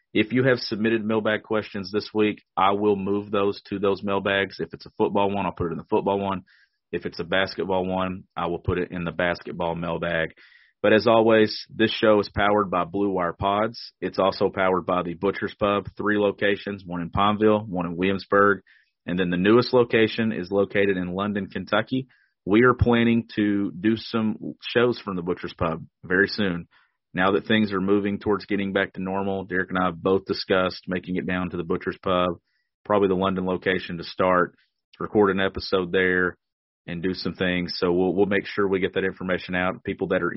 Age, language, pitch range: 40-59, English, 90-105 Hz